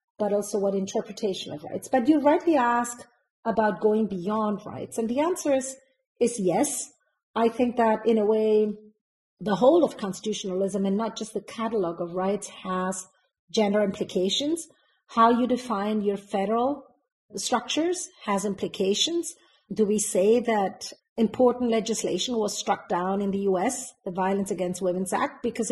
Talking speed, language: 155 wpm, English